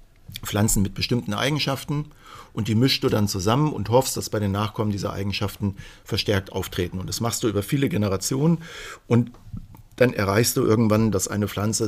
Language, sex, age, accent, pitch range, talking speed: German, male, 50-69, German, 100-120 Hz, 175 wpm